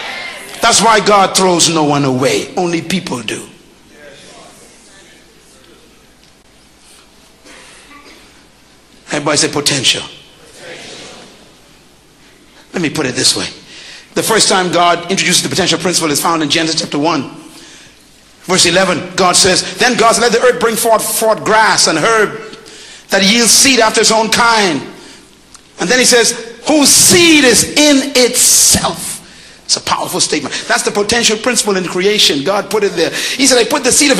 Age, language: 60-79, English